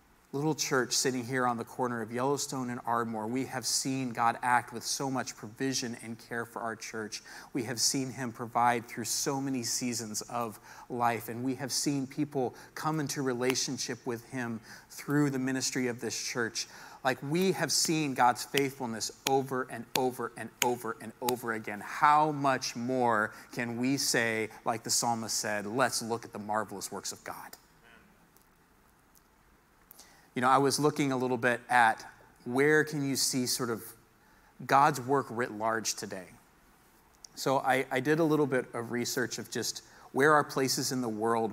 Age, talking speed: 40-59, 175 wpm